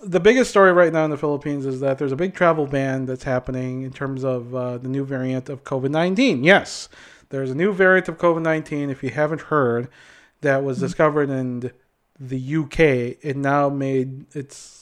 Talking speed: 200 wpm